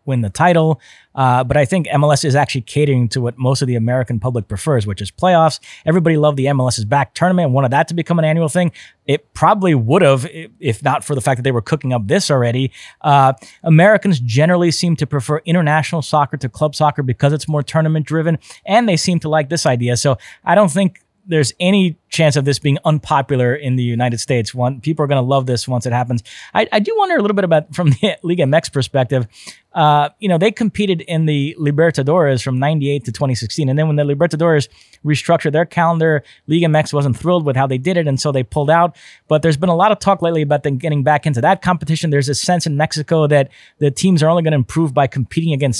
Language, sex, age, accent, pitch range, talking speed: English, male, 30-49, American, 135-165 Hz, 235 wpm